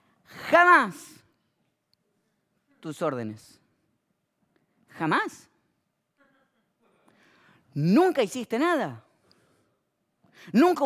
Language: Spanish